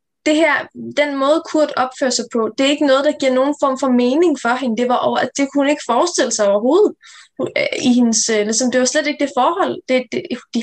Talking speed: 245 wpm